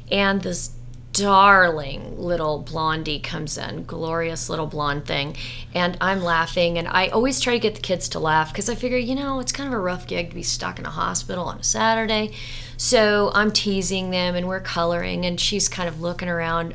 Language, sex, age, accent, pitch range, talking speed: English, female, 30-49, American, 155-205 Hz, 205 wpm